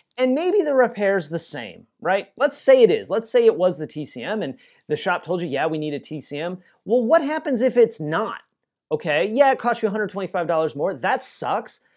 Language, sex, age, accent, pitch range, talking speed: English, male, 30-49, American, 150-220 Hz, 210 wpm